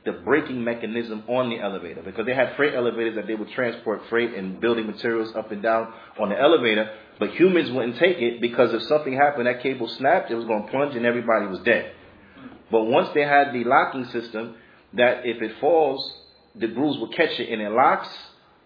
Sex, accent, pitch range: male, American, 110-130 Hz